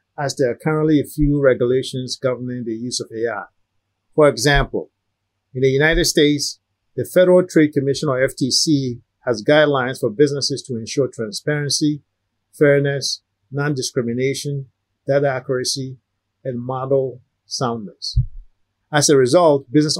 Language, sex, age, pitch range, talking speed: English, male, 50-69, 115-145 Hz, 125 wpm